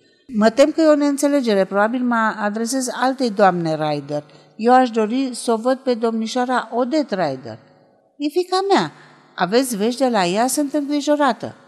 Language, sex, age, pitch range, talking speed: Romanian, female, 50-69, 190-270 Hz, 165 wpm